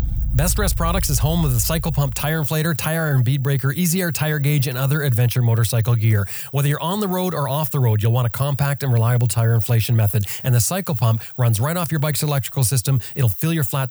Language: English